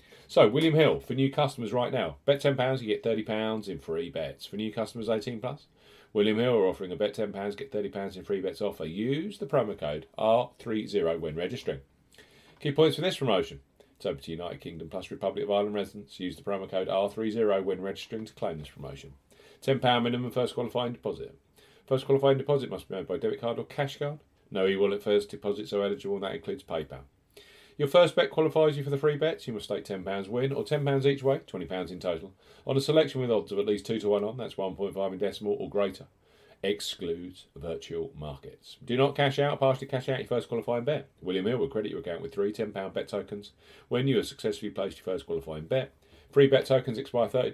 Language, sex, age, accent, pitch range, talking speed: English, male, 40-59, British, 100-135 Hz, 220 wpm